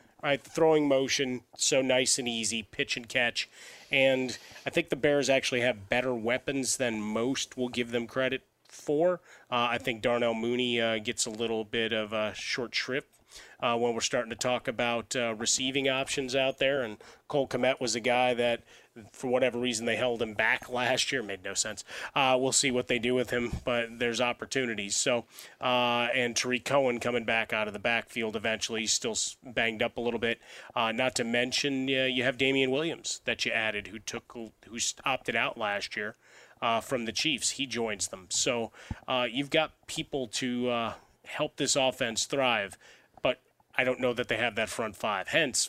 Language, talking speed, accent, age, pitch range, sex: English, 195 wpm, American, 30-49, 115-130 Hz, male